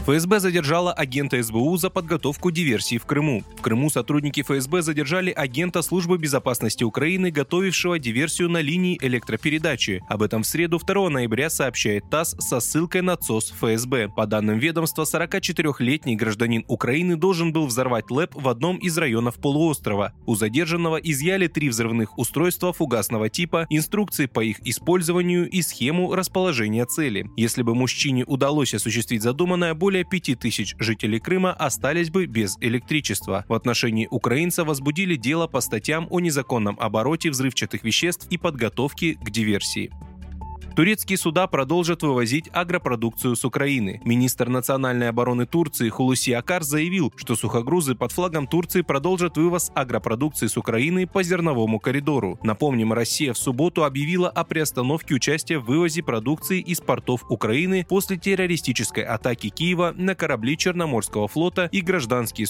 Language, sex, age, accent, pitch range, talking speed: Russian, male, 20-39, native, 115-170 Hz, 145 wpm